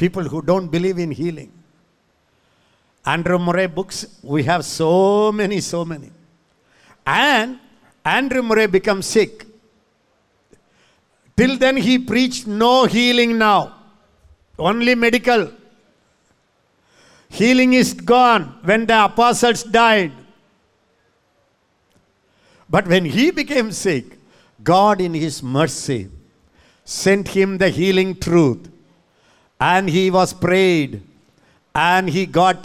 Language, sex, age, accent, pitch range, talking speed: English, male, 50-69, Indian, 160-220 Hz, 105 wpm